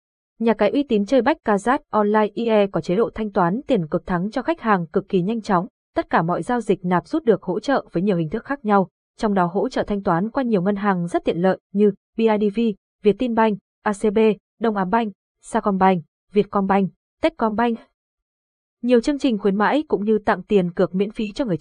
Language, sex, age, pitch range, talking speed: Vietnamese, female, 20-39, 190-235 Hz, 215 wpm